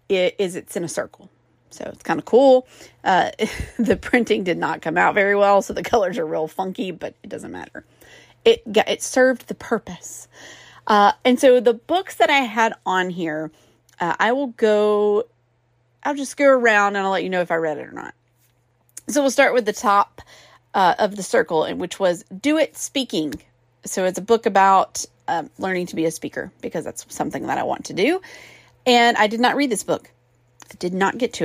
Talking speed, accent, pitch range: 215 wpm, American, 170-250 Hz